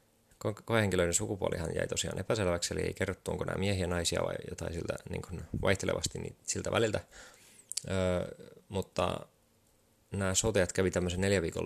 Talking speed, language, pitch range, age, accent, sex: 140 wpm, Finnish, 90-100 Hz, 20-39, native, male